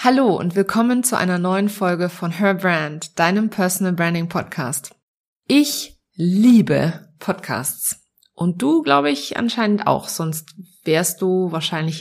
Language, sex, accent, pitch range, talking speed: German, female, German, 170-210 Hz, 135 wpm